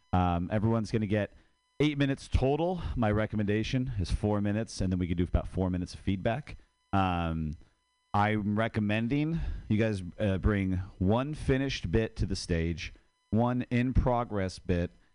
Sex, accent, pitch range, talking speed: male, American, 85-105 Hz, 155 wpm